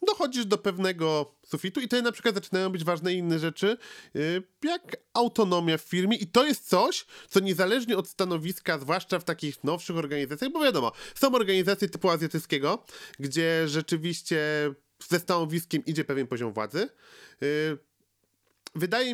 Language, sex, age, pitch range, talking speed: Polish, male, 40-59, 150-210 Hz, 140 wpm